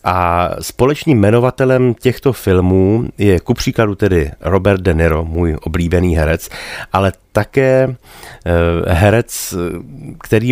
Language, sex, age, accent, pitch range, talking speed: Czech, male, 30-49, native, 90-110 Hz, 110 wpm